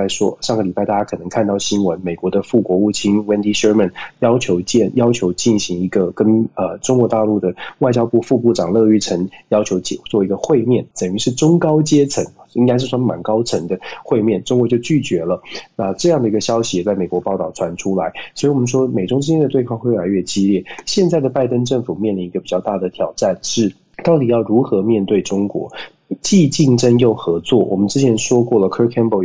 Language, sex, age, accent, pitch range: Chinese, male, 20-39, native, 100-125 Hz